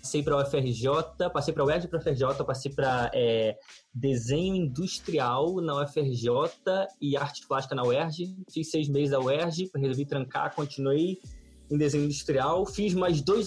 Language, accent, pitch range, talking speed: Portuguese, Brazilian, 130-165 Hz, 165 wpm